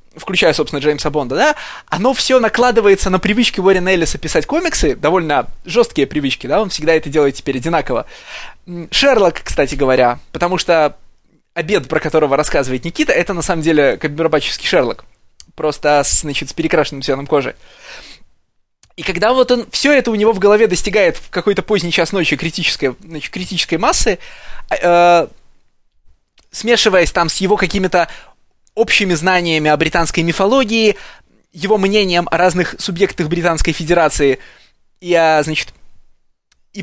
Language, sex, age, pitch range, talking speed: Russian, male, 20-39, 155-205 Hz, 145 wpm